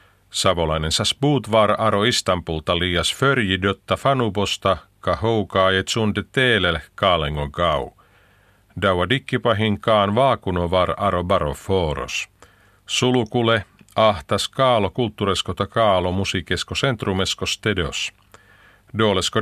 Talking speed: 85 wpm